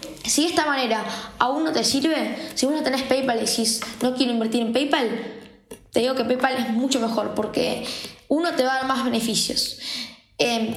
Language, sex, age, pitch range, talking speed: Spanish, female, 10-29, 230-280 Hz, 200 wpm